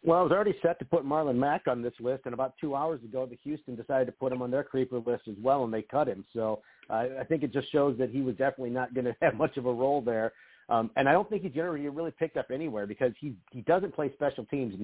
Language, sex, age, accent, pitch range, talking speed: English, male, 40-59, American, 120-150 Hz, 295 wpm